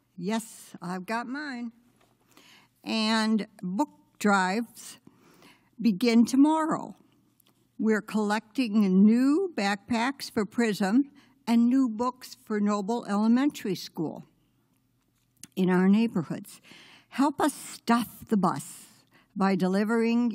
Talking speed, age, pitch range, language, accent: 95 wpm, 60-79, 190-240 Hz, English, American